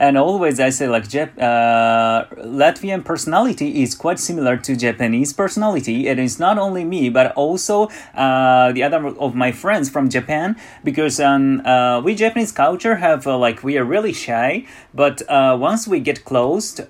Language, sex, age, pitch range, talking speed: English, male, 30-49, 125-195 Hz, 175 wpm